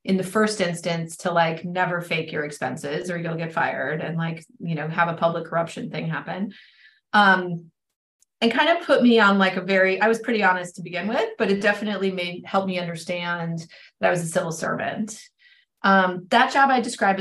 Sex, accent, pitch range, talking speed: female, American, 170-200 Hz, 205 wpm